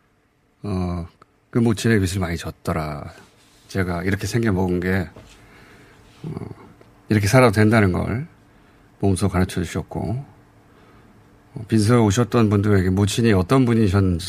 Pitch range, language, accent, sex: 95-125 Hz, Korean, native, male